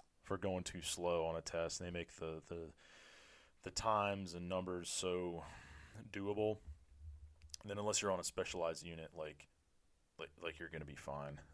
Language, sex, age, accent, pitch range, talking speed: English, male, 30-49, American, 80-95 Hz, 170 wpm